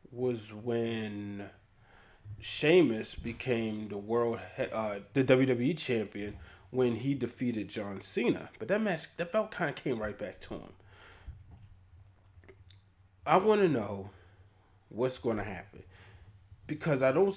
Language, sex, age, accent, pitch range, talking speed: English, male, 20-39, American, 100-130 Hz, 130 wpm